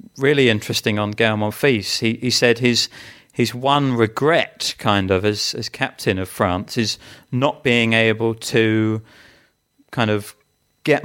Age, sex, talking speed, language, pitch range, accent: 40-59, male, 145 wpm, English, 105-130 Hz, British